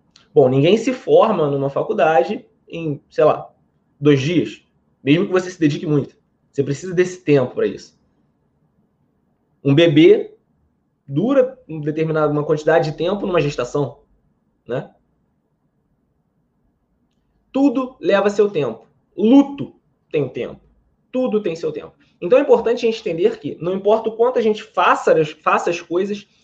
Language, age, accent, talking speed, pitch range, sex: Portuguese, 20-39, Brazilian, 140 wpm, 150-220 Hz, male